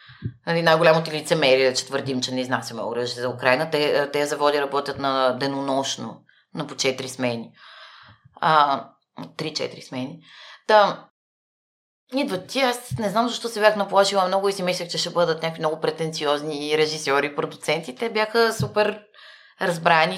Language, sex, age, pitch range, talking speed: Bulgarian, female, 20-39, 150-200 Hz, 145 wpm